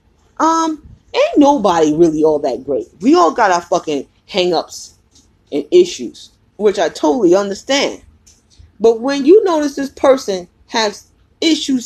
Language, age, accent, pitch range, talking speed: English, 20-39, American, 180-300 Hz, 135 wpm